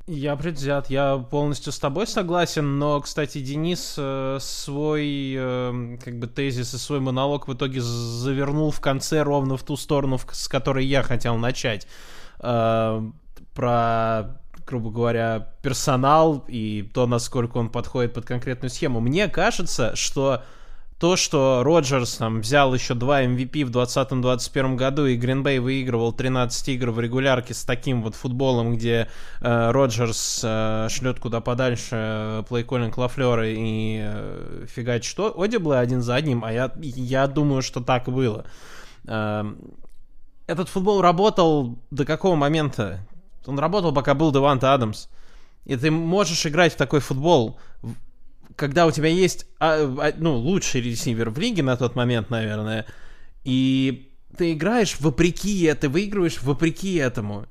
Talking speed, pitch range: 140 wpm, 120-150 Hz